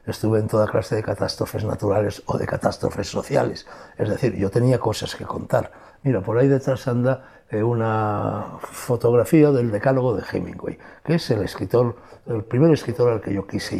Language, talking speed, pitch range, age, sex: Spanish, 175 wpm, 110-135 Hz, 60-79, male